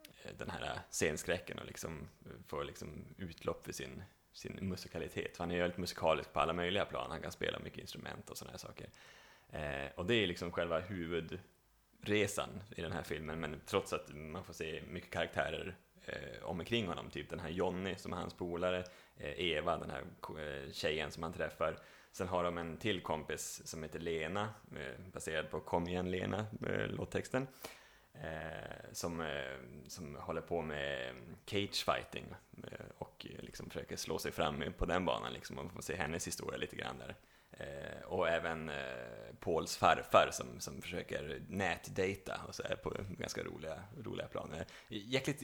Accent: native